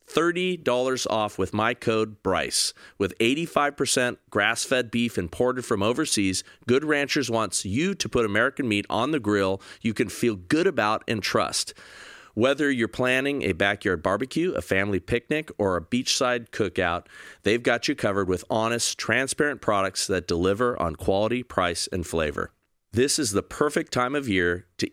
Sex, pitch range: male, 95-130 Hz